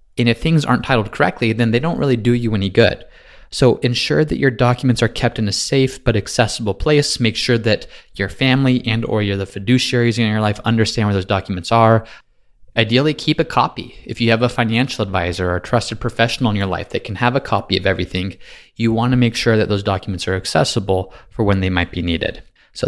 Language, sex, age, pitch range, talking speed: English, male, 20-39, 105-125 Hz, 225 wpm